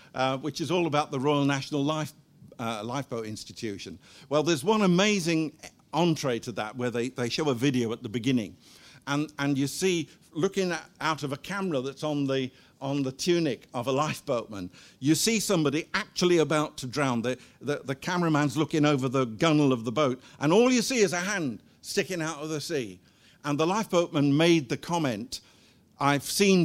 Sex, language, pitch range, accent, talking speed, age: male, English, 135-195 Hz, British, 190 wpm, 50-69